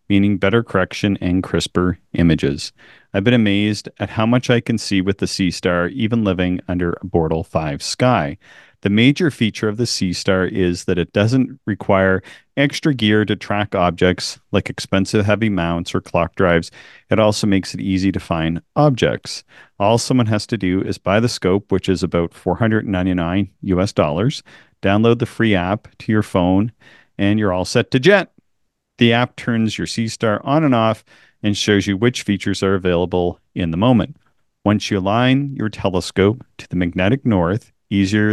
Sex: male